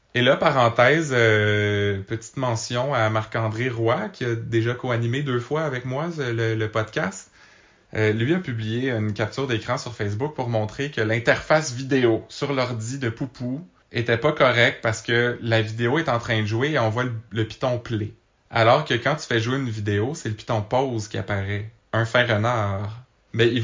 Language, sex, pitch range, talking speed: French, male, 110-125 Hz, 195 wpm